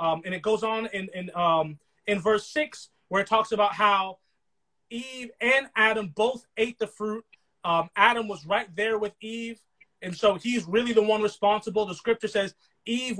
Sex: male